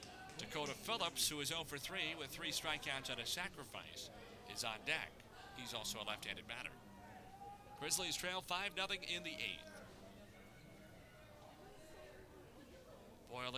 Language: English